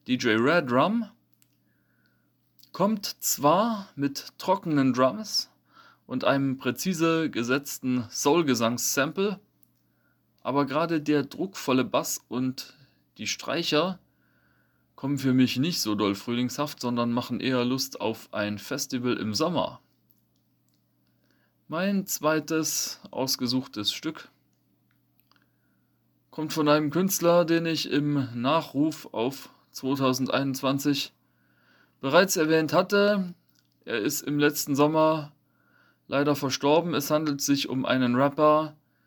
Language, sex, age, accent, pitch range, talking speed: German, male, 30-49, German, 125-160 Hz, 105 wpm